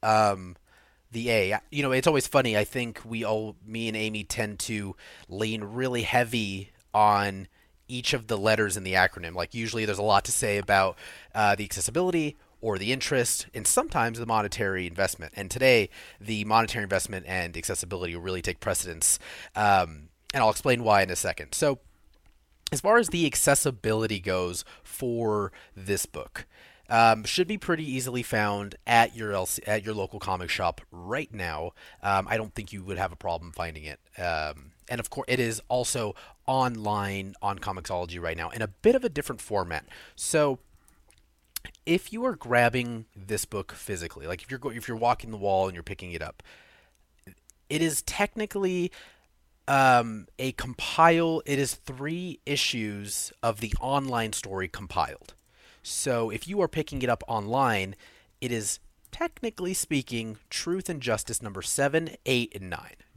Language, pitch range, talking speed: English, 95-125 Hz, 170 wpm